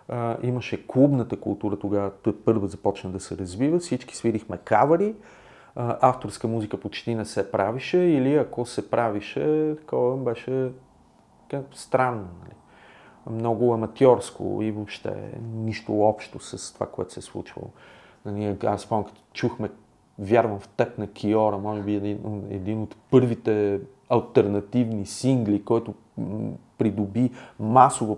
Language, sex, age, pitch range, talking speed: Bulgarian, male, 40-59, 105-130 Hz, 135 wpm